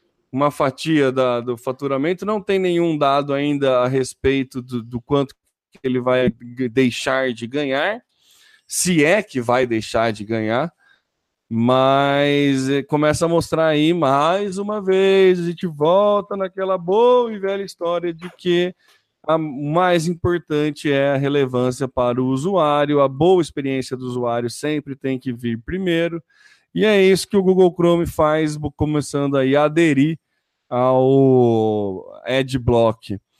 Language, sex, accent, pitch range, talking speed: Portuguese, male, Brazilian, 130-170 Hz, 140 wpm